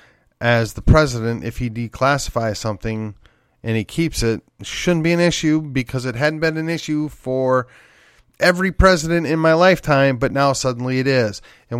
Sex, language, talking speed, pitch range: male, English, 175 wpm, 125-185 Hz